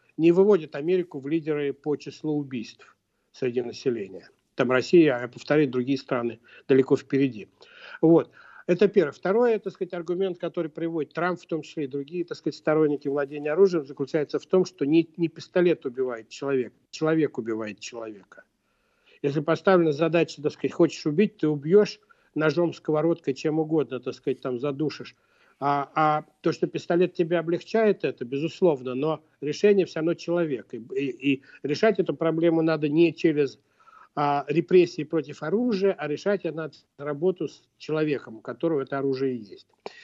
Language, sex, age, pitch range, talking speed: Russian, male, 60-79, 145-180 Hz, 160 wpm